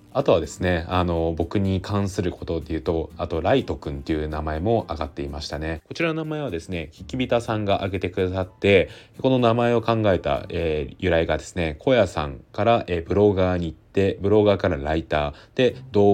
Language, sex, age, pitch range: Japanese, male, 20-39, 80-105 Hz